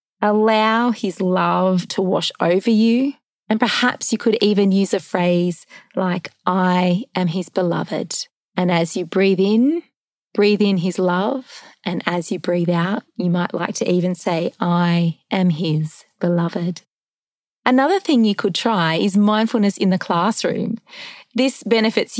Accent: Australian